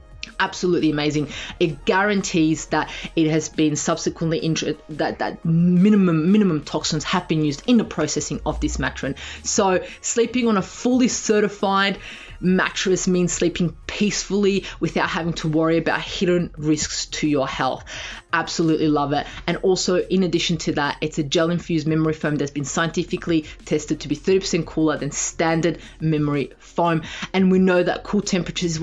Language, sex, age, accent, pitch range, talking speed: English, female, 20-39, Australian, 155-185 Hz, 160 wpm